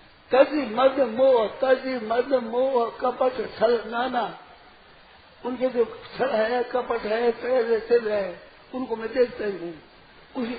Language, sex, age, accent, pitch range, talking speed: Hindi, male, 50-69, native, 225-270 Hz, 85 wpm